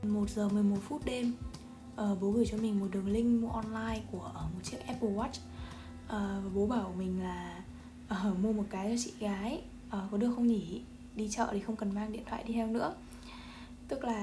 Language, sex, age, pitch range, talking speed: Vietnamese, female, 10-29, 195-235 Hz, 215 wpm